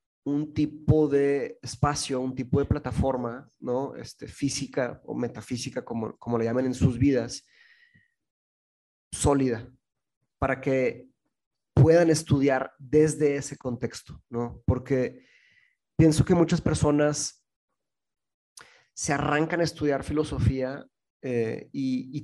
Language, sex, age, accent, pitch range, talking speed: Spanish, male, 30-49, Mexican, 130-155 Hz, 115 wpm